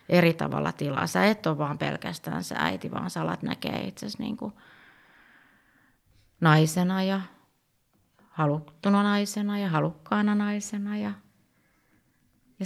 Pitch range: 160-205 Hz